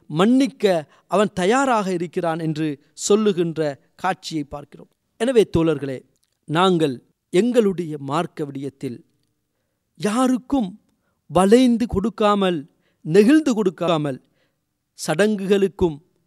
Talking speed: 75 wpm